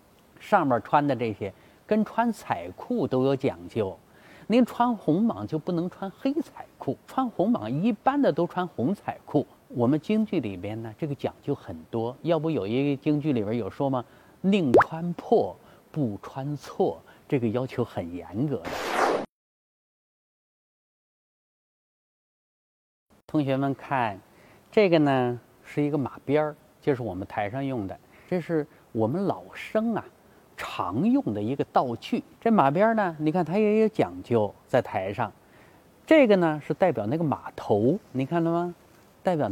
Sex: male